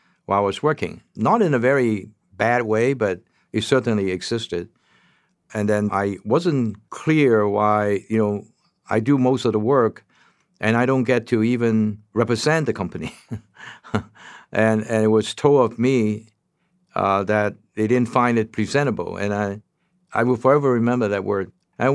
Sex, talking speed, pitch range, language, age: male, 165 wpm, 110-145 Hz, English, 60-79